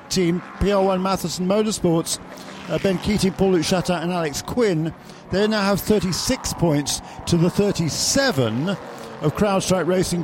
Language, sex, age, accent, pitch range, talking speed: English, male, 50-69, British, 155-195 Hz, 135 wpm